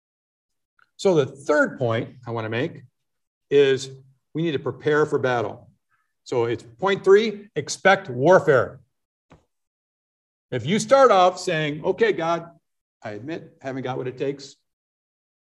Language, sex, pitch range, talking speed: English, male, 130-195 Hz, 135 wpm